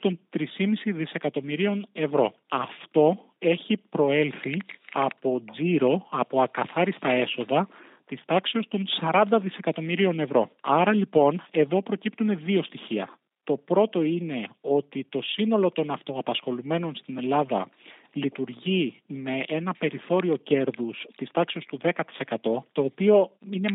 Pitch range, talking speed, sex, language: 135-180 Hz, 115 wpm, male, Greek